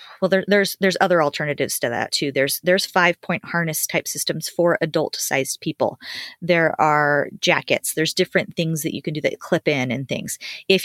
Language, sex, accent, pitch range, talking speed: English, female, American, 150-180 Hz, 190 wpm